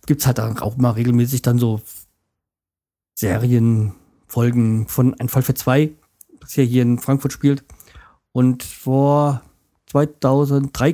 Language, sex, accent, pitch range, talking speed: German, male, German, 115-140 Hz, 125 wpm